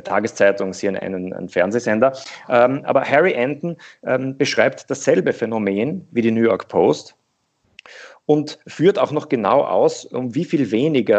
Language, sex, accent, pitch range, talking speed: German, male, German, 105-135 Hz, 155 wpm